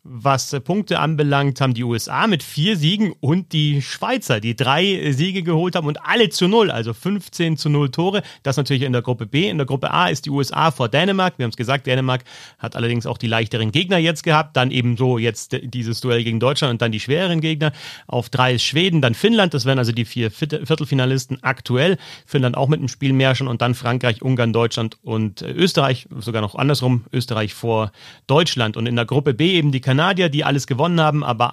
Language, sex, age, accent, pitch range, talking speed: German, male, 40-59, German, 120-155 Hz, 215 wpm